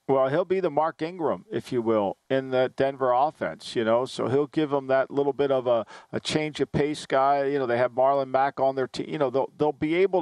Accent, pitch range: American, 135-160 Hz